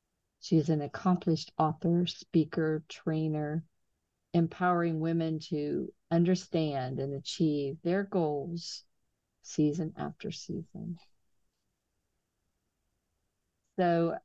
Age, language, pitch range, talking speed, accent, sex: 50-69, English, 150-175 Hz, 75 wpm, American, female